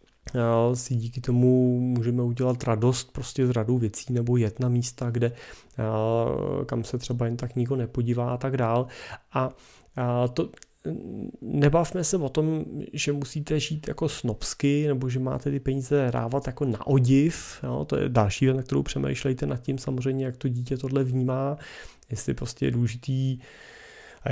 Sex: male